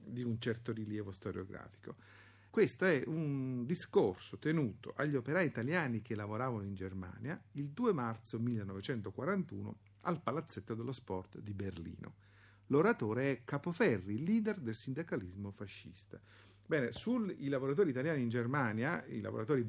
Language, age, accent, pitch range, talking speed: Italian, 50-69, native, 105-140 Hz, 130 wpm